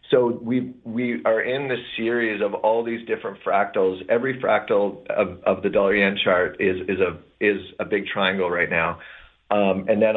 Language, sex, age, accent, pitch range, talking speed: English, male, 30-49, American, 95-115 Hz, 185 wpm